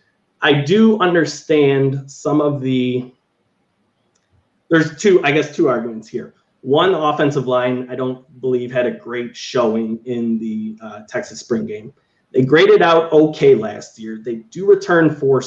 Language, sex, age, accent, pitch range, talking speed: English, male, 30-49, American, 115-150 Hz, 155 wpm